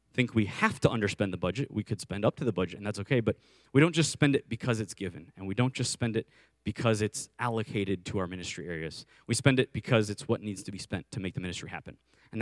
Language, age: English, 20-39